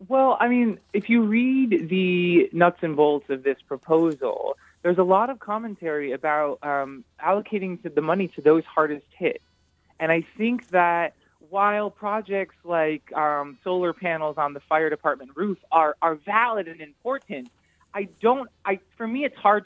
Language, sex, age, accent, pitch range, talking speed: English, male, 20-39, American, 160-205 Hz, 170 wpm